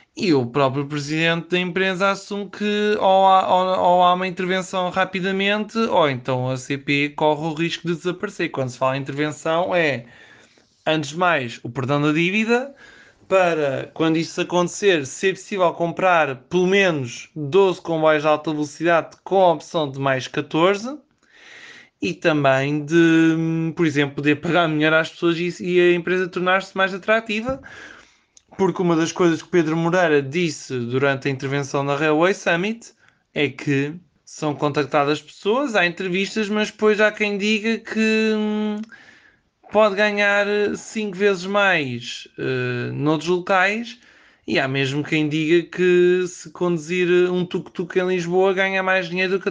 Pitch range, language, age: 150-195 Hz, Portuguese, 20-39